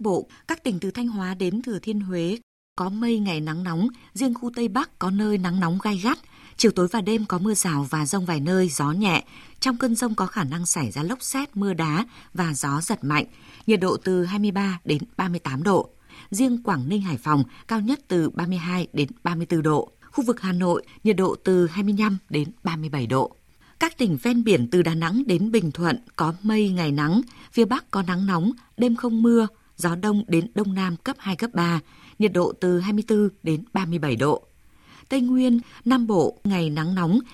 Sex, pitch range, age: female, 170-220 Hz, 20-39